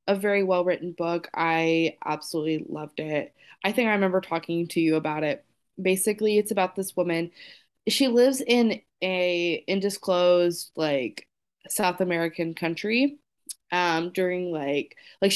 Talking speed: 140 wpm